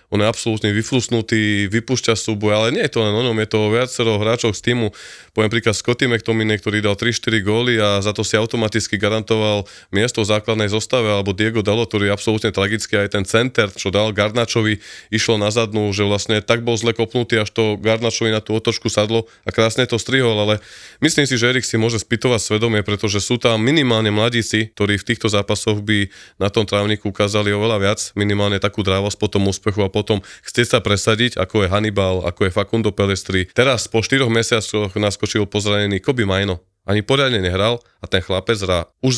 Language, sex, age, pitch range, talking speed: Slovak, male, 20-39, 100-115 Hz, 200 wpm